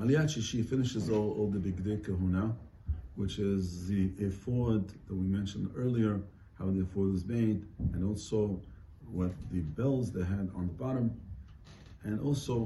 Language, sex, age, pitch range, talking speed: English, male, 50-69, 90-110 Hz, 155 wpm